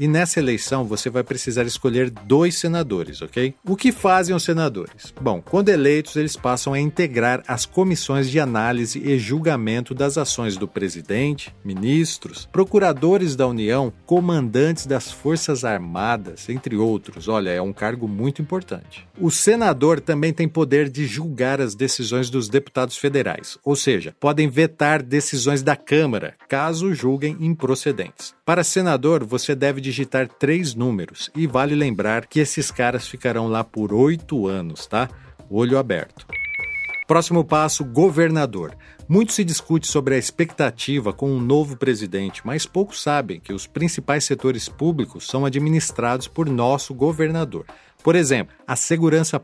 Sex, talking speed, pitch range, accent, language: male, 145 wpm, 125-160 Hz, Brazilian, Portuguese